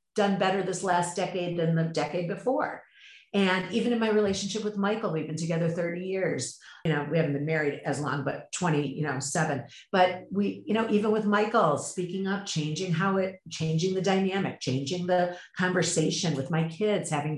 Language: English